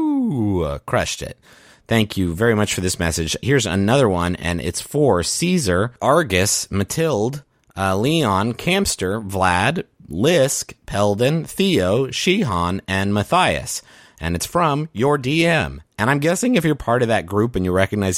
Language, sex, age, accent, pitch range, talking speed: English, male, 30-49, American, 90-135 Hz, 155 wpm